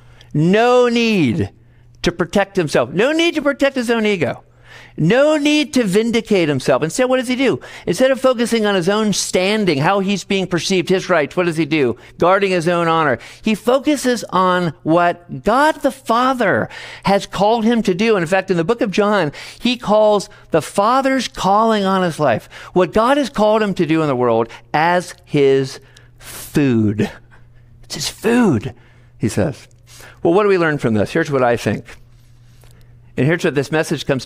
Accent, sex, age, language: American, male, 50-69, English